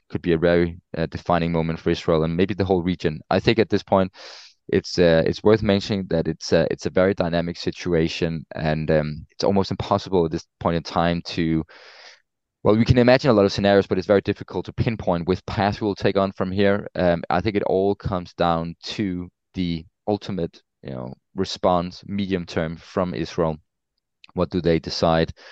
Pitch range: 80-100 Hz